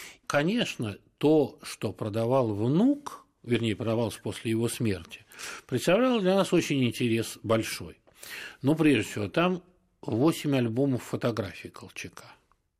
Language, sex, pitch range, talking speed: Russian, male, 115-160 Hz, 115 wpm